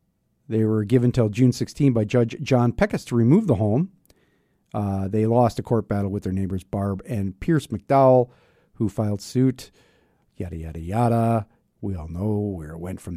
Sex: male